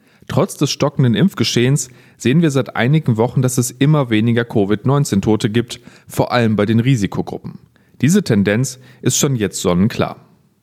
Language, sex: German, male